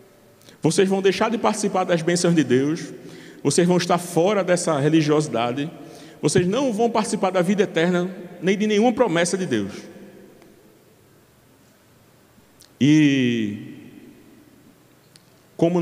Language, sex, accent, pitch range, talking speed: Portuguese, male, Brazilian, 130-170 Hz, 115 wpm